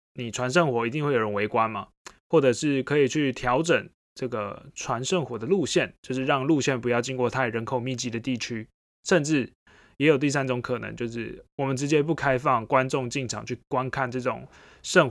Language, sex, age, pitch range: Chinese, male, 20-39, 120-155 Hz